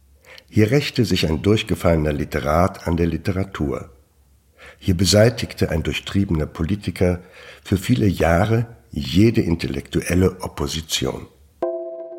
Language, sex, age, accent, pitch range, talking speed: German, male, 60-79, German, 80-105 Hz, 100 wpm